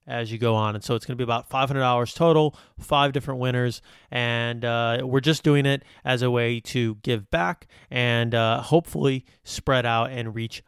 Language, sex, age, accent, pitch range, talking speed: English, male, 30-49, American, 115-135 Hz, 195 wpm